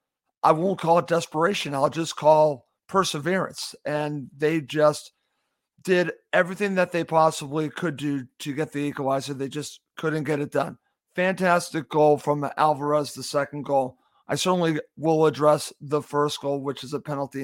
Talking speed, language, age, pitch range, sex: 160 wpm, English, 50-69, 145-165 Hz, male